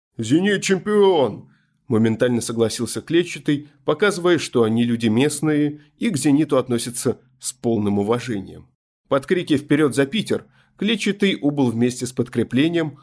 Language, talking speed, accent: Russian, 120 wpm, native